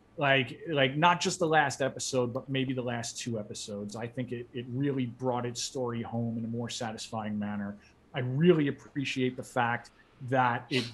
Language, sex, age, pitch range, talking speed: English, male, 30-49, 120-150 Hz, 185 wpm